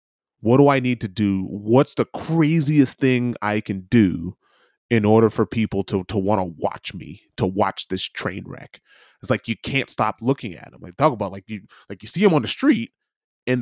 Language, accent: English, American